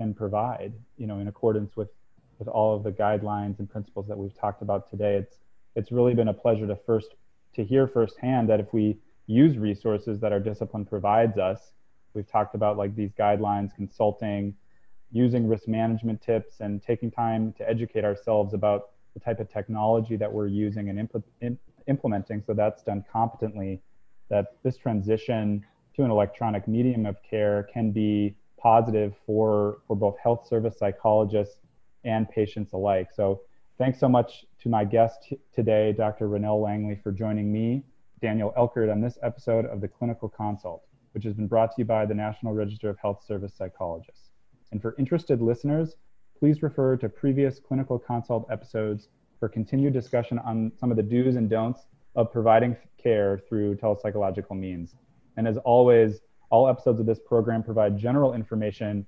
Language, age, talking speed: English, 20-39, 170 wpm